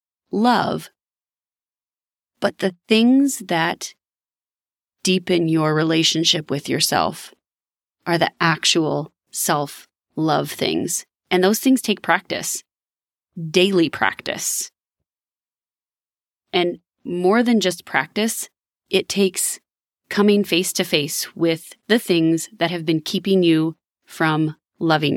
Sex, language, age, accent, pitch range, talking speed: female, English, 30-49, American, 165-200 Hz, 105 wpm